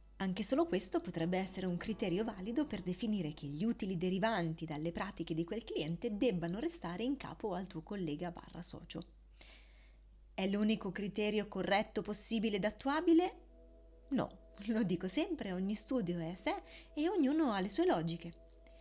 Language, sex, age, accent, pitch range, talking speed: Italian, female, 20-39, native, 175-245 Hz, 160 wpm